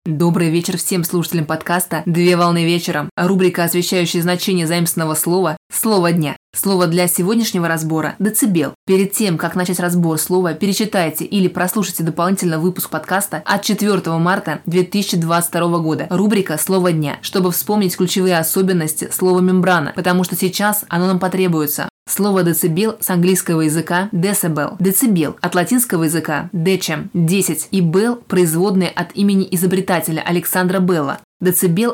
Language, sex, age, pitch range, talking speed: Russian, female, 20-39, 170-190 Hz, 135 wpm